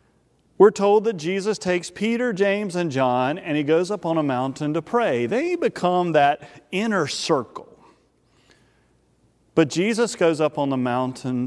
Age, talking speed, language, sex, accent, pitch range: 40-59, 155 wpm, English, male, American, 145-230 Hz